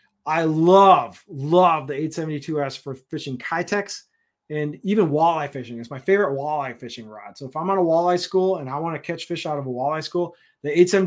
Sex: male